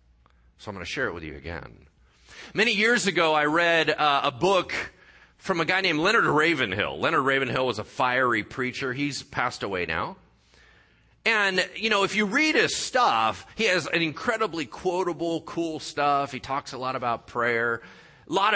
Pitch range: 120-190 Hz